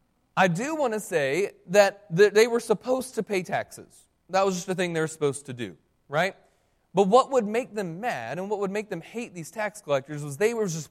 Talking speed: 230 wpm